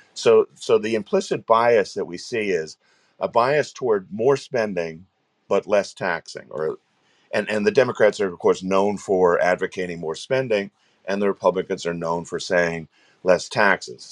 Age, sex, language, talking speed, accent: 50-69, male, English, 165 wpm, American